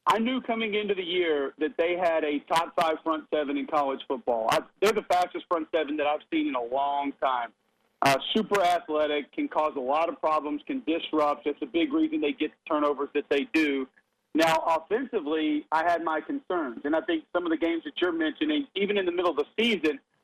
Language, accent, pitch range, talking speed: English, American, 150-185 Hz, 220 wpm